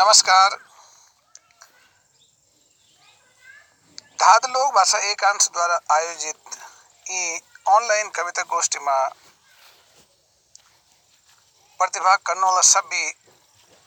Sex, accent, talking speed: male, native, 50 wpm